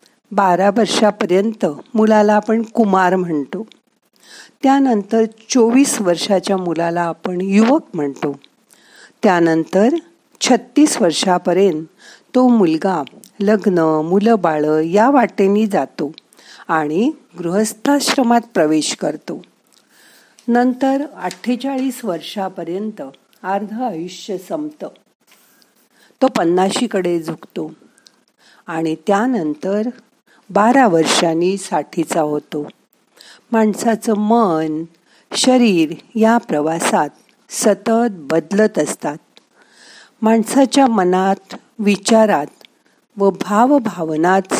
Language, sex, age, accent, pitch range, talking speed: Marathi, female, 50-69, native, 180-235 Hz, 65 wpm